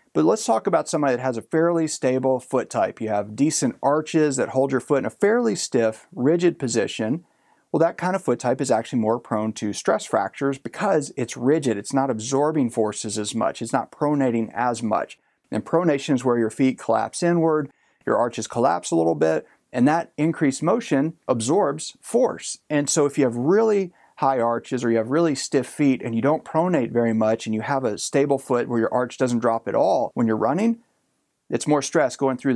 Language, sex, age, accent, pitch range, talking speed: English, male, 40-59, American, 120-155 Hz, 210 wpm